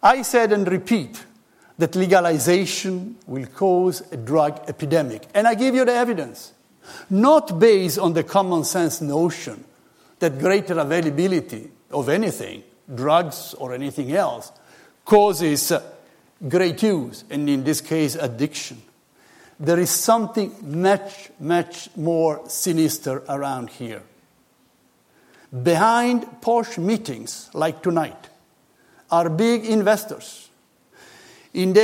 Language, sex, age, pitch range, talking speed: English, male, 60-79, 160-215 Hz, 115 wpm